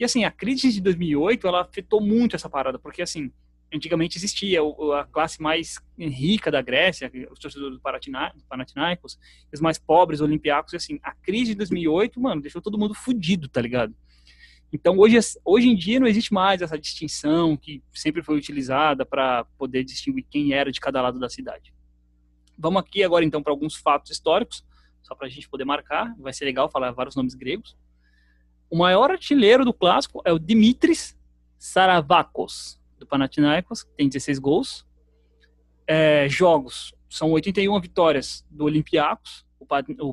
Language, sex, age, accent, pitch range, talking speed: Portuguese, male, 20-39, Brazilian, 125-185 Hz, 160 wpm